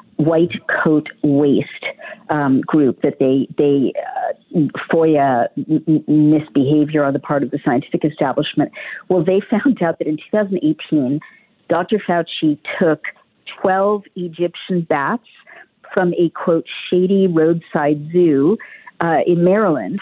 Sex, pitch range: female, 150-185 Hz